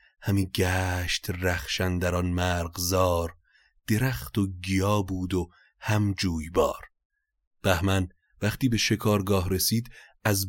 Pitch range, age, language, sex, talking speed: 90-110 Hz, 30-49, Persian, male, 110 wpm